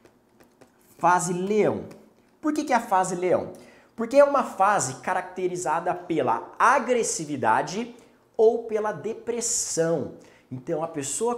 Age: 20-39